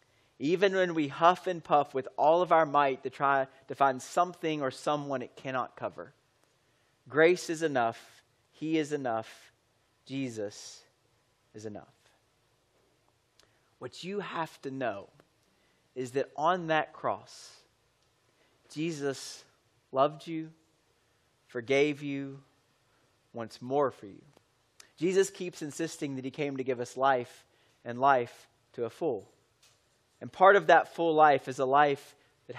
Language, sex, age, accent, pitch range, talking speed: English, male, 30-49, American, 120-150 Hz, 135 wpm